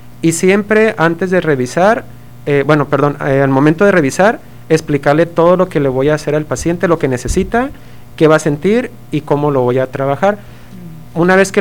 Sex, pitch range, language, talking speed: male, 135-175 Hz, Spanish, 200 wpm